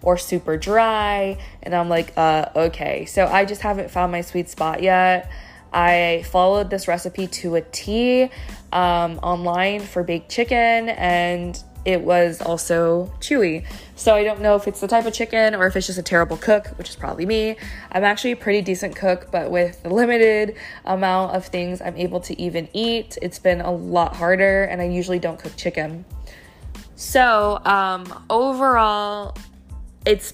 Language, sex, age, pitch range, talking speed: English, female, 20-39, 175-200 Hz, 175 wpm